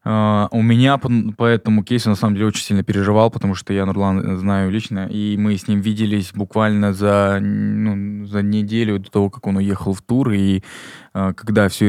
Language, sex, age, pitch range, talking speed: Russian, male, 20-39, 95-110 Hz, 185 wpm